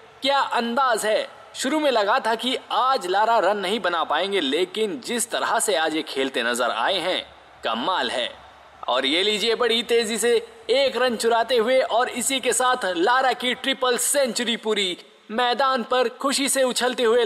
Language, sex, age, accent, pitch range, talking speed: Hindi, male, 20-39, native, 220-280 Hz, 175 wpm